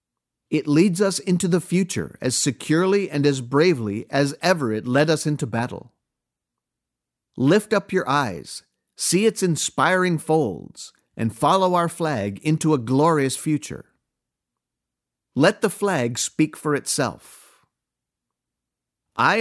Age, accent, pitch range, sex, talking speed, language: 50-69, American, 125-175 Hz, male, 125 wpm, English